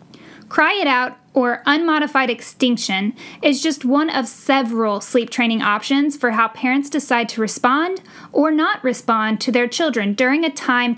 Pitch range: 230-275 Hz